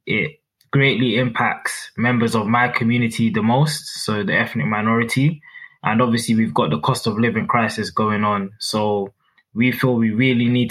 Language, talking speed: English, 170 wpm